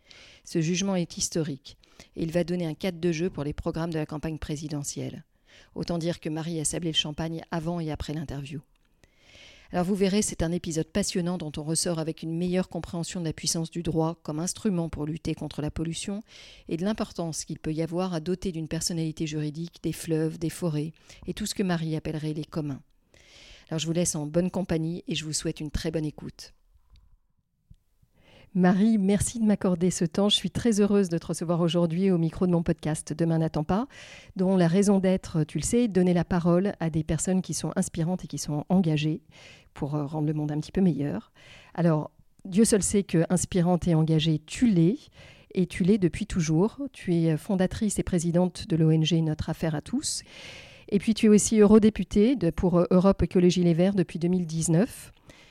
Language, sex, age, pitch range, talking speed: French, female, 40-59, 160-185 Hz, 200 wpm